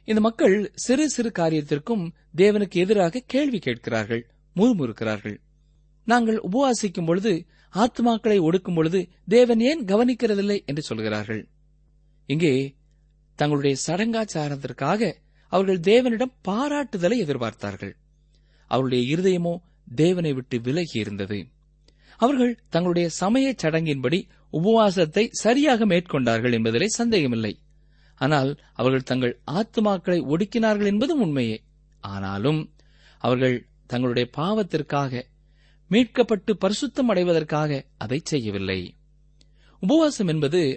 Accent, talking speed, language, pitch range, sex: native, 85 wpm, Tamil, 135-210 Hz, male